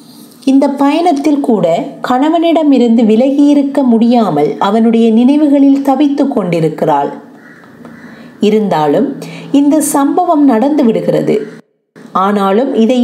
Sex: female